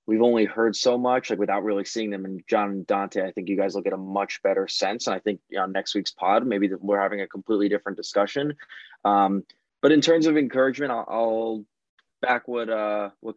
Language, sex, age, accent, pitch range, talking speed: English, male, 20-39, American, 100-115 Hz, 235 wpm